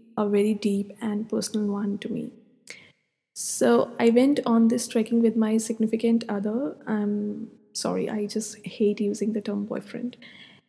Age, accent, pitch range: 20-39, Indian, 210-230 Hz